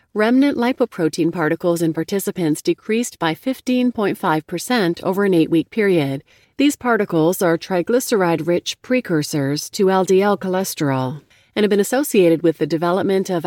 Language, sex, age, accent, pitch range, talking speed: English, female, 40-59, American, 165-225 Hz, 125 wpm